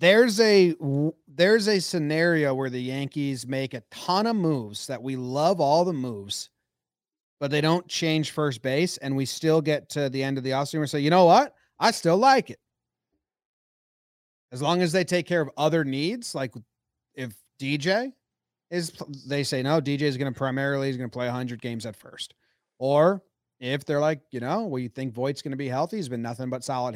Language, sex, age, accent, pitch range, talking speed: English, male, 30-49, American, 125-165 Hz, 205 wpm